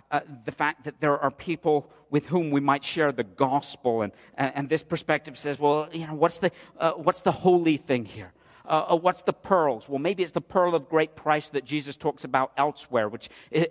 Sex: male